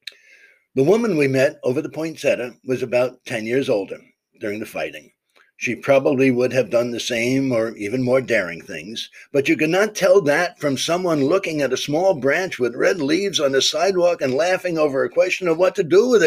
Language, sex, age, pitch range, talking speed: English, male, 60-79, 125-160 Hz, 205 wpm